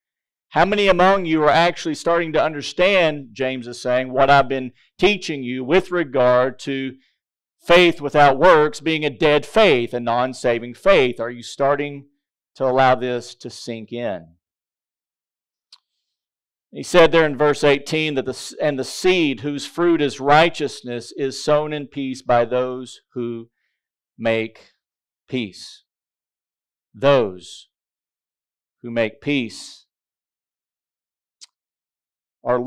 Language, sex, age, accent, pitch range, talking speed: English, male, 40-59, American, 125-155 Hz, 125 wpm